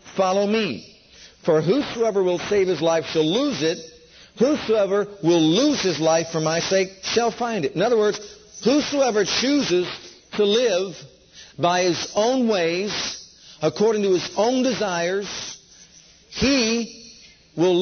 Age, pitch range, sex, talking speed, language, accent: 60-79, 175-220 Hz, male, 135 wpm, English, American